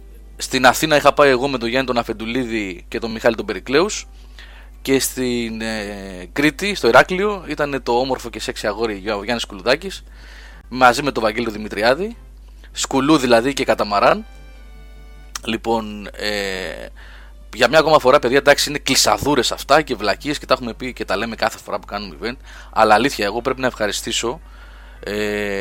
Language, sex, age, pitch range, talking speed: Greek, male, 20-39, 100-140 Hz, 170 wpm